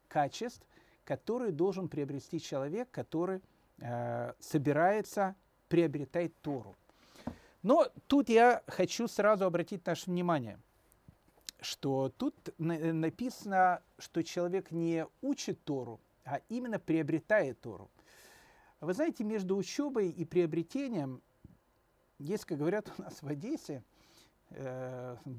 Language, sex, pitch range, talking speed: Russian, male, 135-195 Hz, 105 wpm